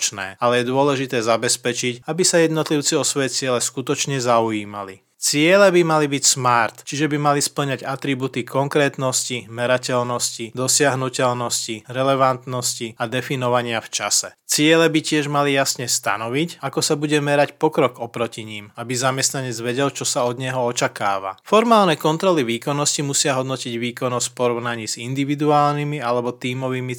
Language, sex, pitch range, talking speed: Slovak, male, 120-145 Hz, 140 wpm